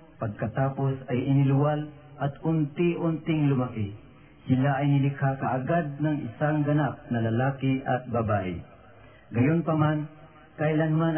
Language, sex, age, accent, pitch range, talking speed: Filipino, male, 40-59, native, 130-165 Hz, 100 wpm